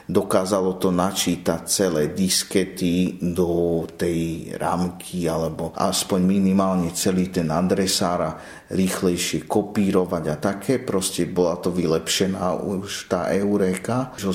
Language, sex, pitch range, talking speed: Slovak, male, 90-105 Hz, 115 wpm